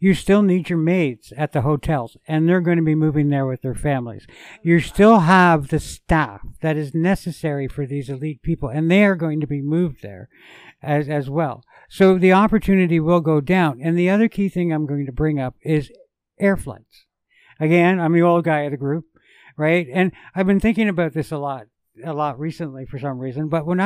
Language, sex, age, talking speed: English, male, 60-79, 215 wpm